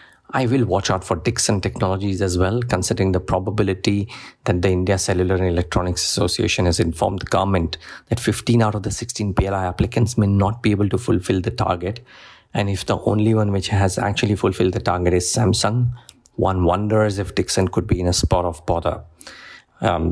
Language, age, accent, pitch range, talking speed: English, 50-69, Indian, 90-105 Hz, 190 wpm